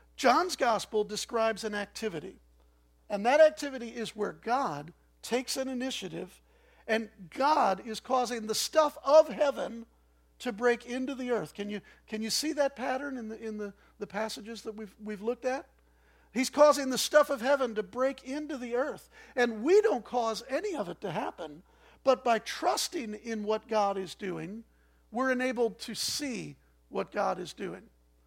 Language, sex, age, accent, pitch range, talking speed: English, male, 50-69, American, 205-255 Hz, 170 wpm